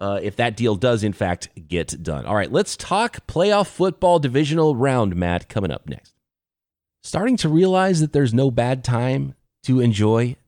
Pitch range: 100-150 Hz